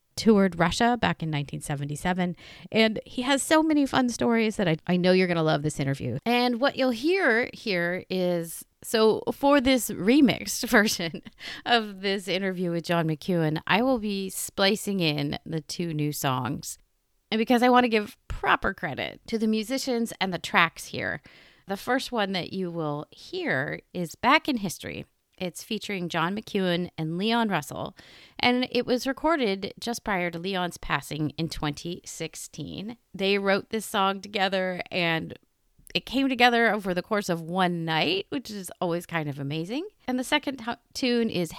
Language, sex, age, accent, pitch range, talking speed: English, female, 30-49, American, 165-230 Hz, 170 wpm